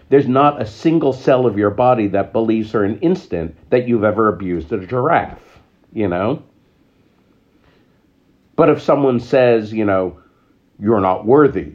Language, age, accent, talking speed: English, 50-69, American, 155 wpm